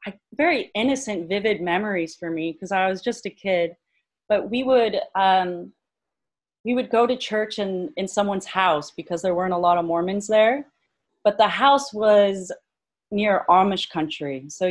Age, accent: 30-49, American